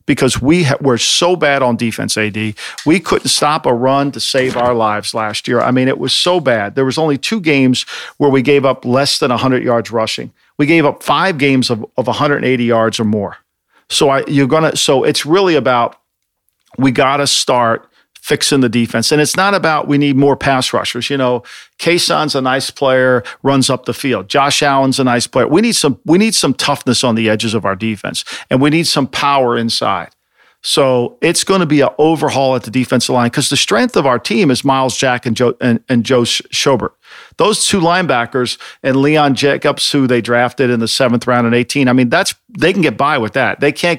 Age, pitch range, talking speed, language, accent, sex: 50-69, 120-145 Hz, 225 wpm, English, American, male